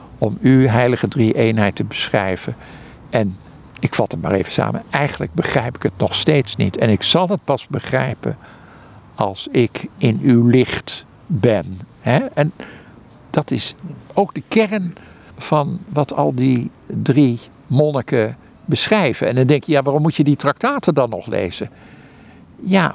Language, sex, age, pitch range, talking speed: Dutch, male, 60-79, 125-170 Hz, 160 wpm